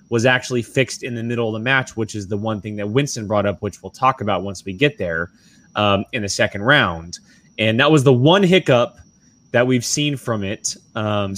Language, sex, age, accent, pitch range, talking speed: English, male, 20-39, American, 105-140 Hz, 225 wpm